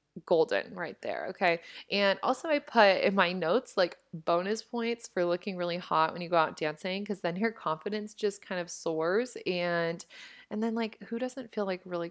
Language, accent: English, American